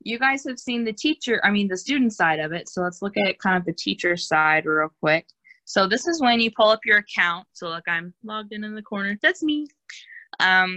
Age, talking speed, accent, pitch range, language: 20-39, 245 wpm, American, 175-215 Hz, English